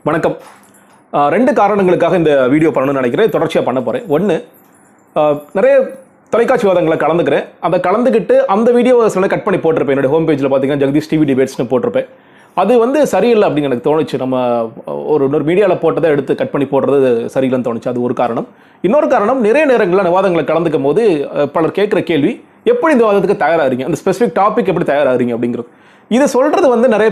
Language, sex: Tamil, male